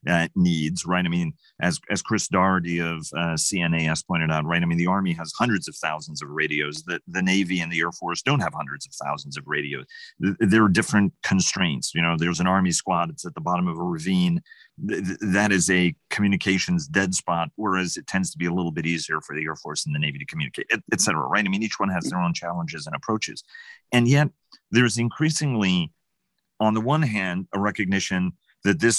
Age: 40-59